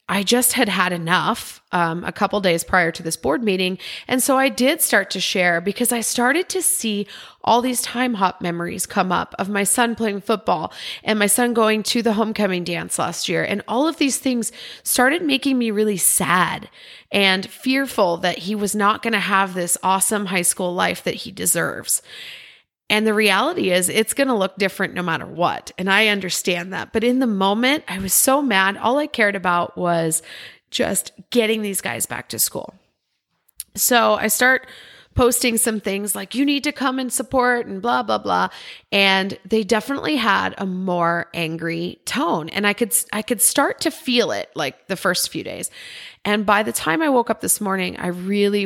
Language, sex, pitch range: English, female, 185-245 Hz